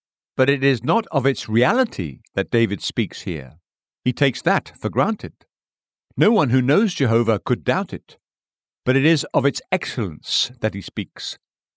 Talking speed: 170 wpm